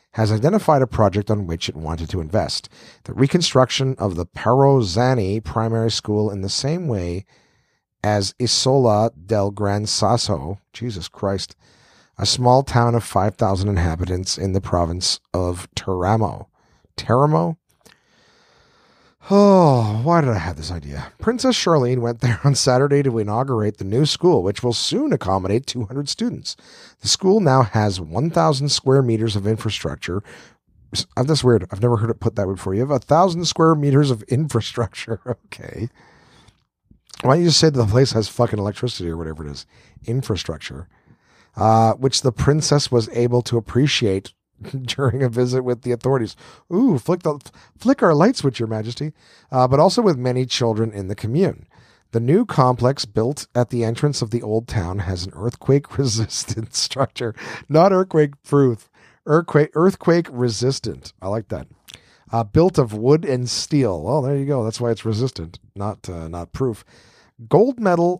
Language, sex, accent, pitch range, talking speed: English, male, American, 105-140 Hz, 160 wpm